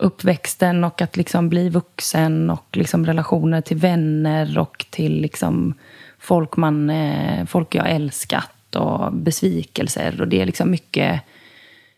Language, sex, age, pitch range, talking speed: English, female, 20-39, 165-195 Hz, 105 wpm